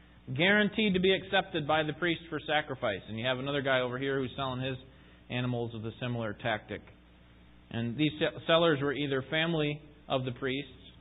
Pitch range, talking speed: 110-150 Hz, 185 wpm